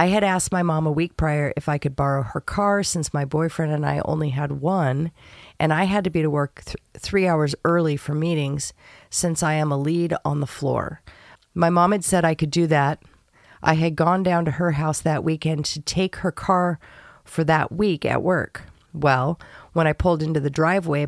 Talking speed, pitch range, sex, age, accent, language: 215 wpm, 140-170 Hz, female, 40-59, American, English